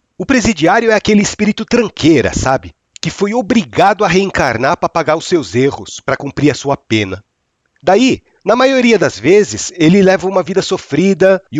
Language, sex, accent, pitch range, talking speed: Portuguese, male, Brazilian, 145-205 Hz, 170 wpm